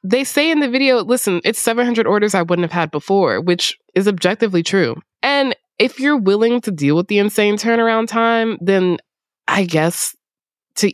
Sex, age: female, 20-39